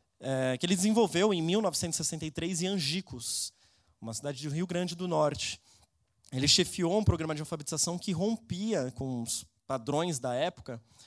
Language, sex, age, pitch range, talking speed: Portuguese, male, 20-39, 130-180 Hz, 145 wpm